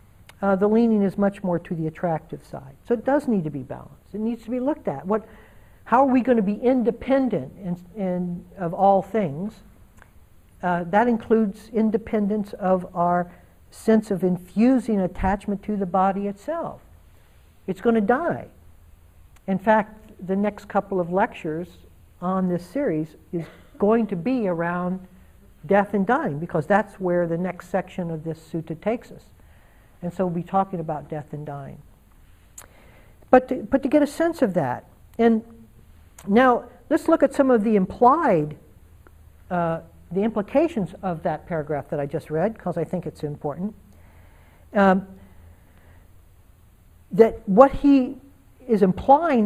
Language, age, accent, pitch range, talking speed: English, 60-79, American, 155-220 Hz, 160 wpm